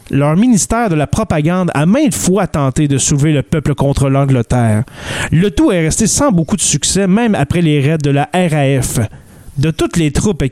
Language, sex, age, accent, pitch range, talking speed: French, male, 30-49, Canadian, 140-185 Hz, 195 wpm